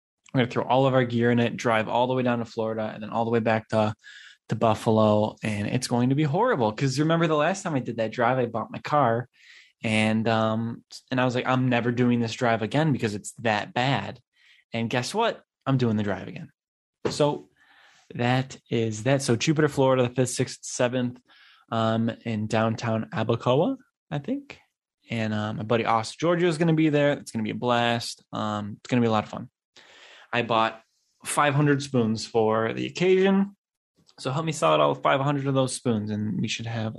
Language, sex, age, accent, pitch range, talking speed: English, male, 10-29, American, 110-140 Hz, 215 wpm